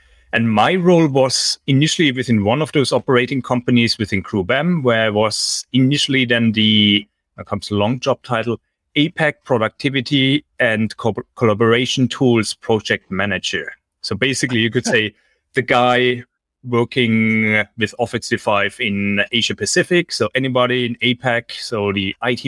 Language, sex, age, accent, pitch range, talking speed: English, male, 30-49, German, 105-125 Hz, 140 wpm